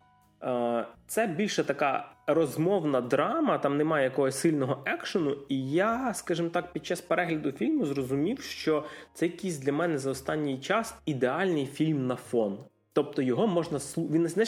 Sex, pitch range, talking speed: male, 130-180 Hz, 145 wpm